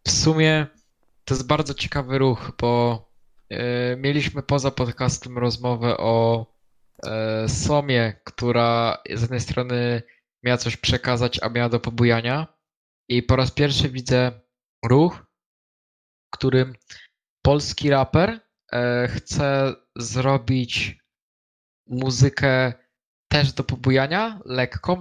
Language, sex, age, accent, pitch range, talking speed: English, male, 20-39, Polish, 120-140 Hz, 100 wpm